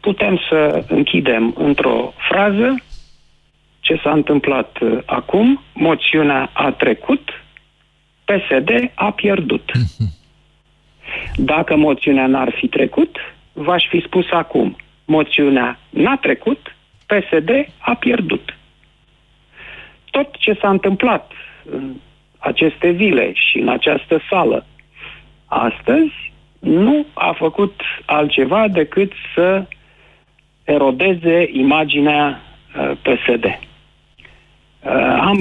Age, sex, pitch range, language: 40-59, male, 135-205 Hz, Romanian